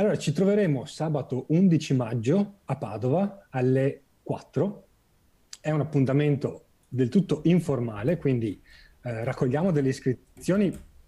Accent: native